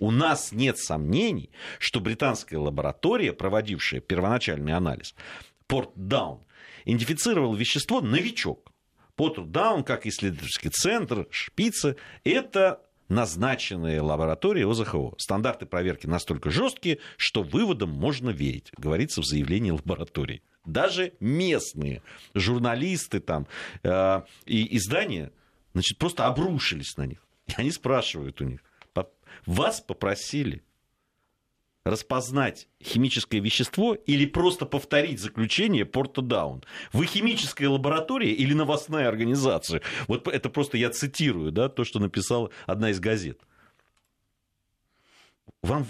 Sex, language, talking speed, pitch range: male, Russian, 105 wpm, 90-140 Hz